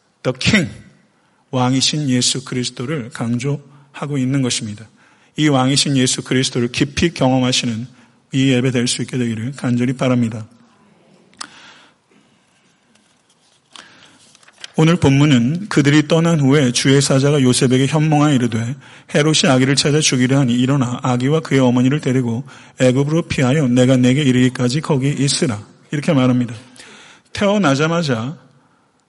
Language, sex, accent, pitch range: Korean, male, native, 125-150 Hz